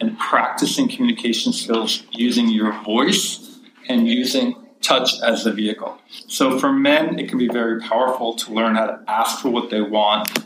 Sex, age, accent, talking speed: male, 40-59, American, 170 wpm